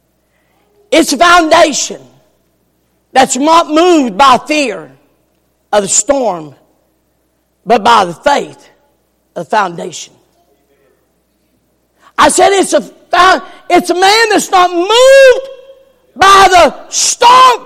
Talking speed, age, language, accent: 105 wpm, 50-69, English, American